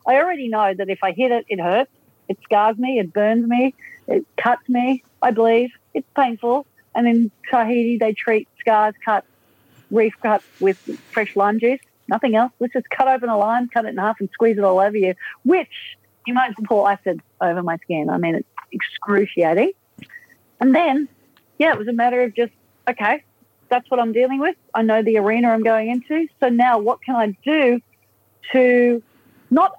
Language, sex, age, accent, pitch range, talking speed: English, female, 40-59, Australian, 205-250 Hz, 195 wpm